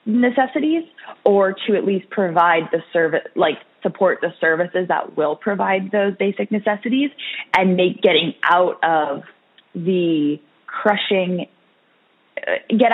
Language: English